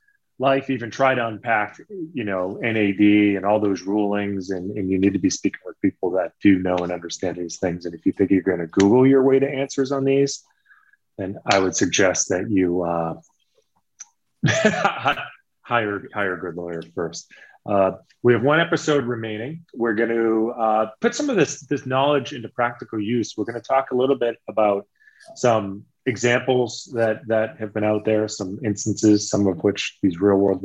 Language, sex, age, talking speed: English, male, 30-49, 190 wpm